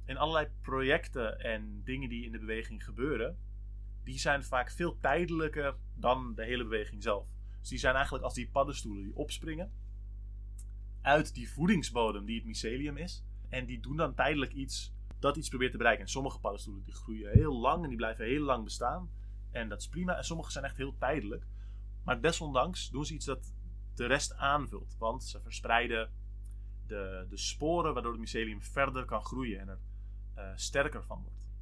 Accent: Dutch